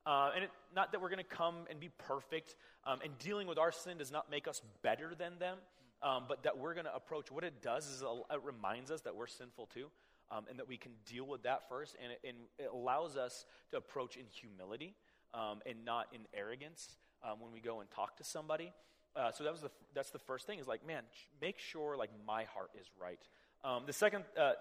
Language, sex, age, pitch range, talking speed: English, male, 30-49, 125-170 Hz, 240 wpm